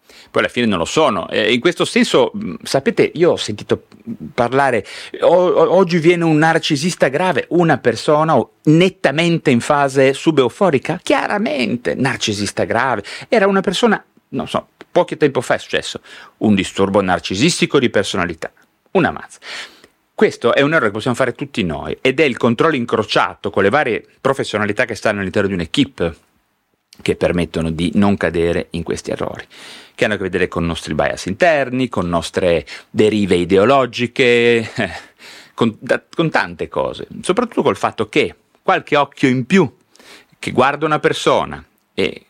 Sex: male